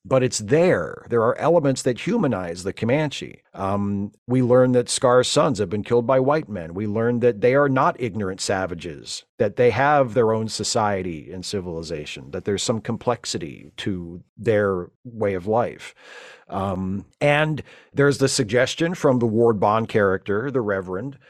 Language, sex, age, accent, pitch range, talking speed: English, male, 50-69, American, 105-130 Hz, 165 wpm